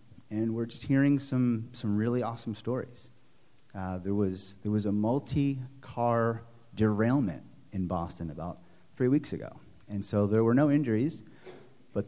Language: English